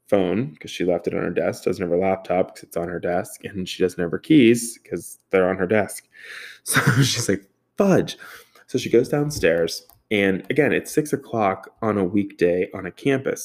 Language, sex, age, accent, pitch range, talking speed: English, male, 20-39, American, 95-135 Hz, 210 wpm